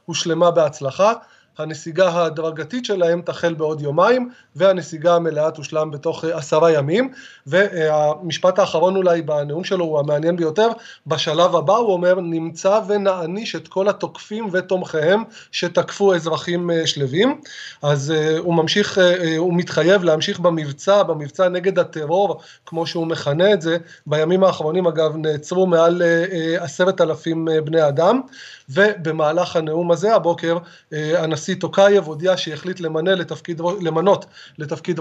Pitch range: 160-190 Hz